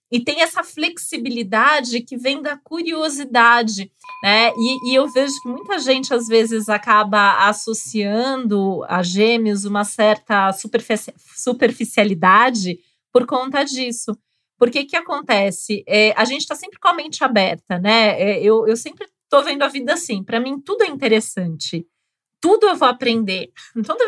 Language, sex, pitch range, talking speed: Portuguese, female, 205-260 Hz, 150 wpm